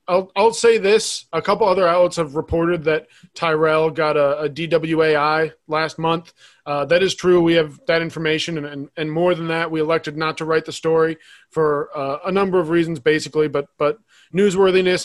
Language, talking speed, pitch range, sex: English, 190 wpm, 150-180 Hz, male